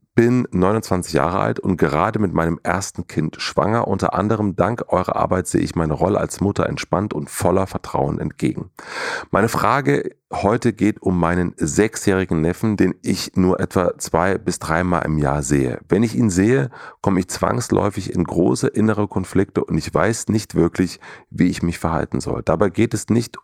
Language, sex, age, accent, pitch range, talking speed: German, male, 40-59, German, 85-110 Hz, 180 wpm